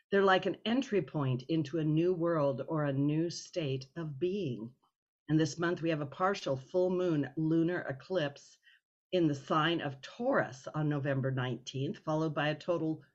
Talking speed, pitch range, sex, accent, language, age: 175 wpm, 145-180 Hz, female, American, English, 50-69